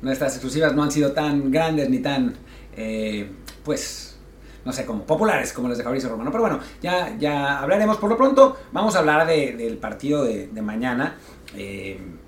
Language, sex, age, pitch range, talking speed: Spanish, male, 40-59, 130-180 Hz, 185 wpm